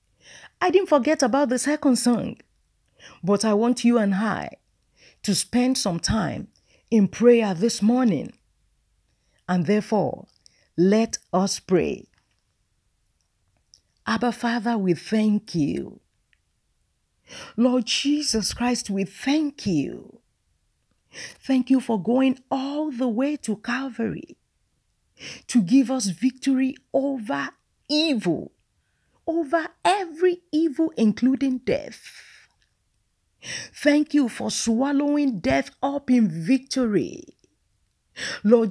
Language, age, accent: English, 50-69, Nigerian